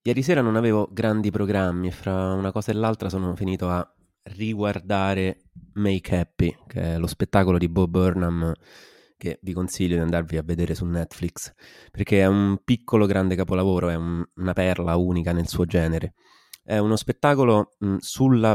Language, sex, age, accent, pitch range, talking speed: Italian, male, 20-39, native, 90-100 Hz, 170 wpm